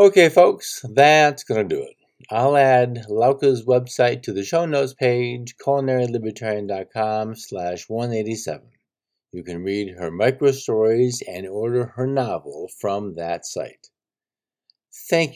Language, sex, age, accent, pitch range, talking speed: English, male, 50-69, American, 105-140 Hz, 125 wpm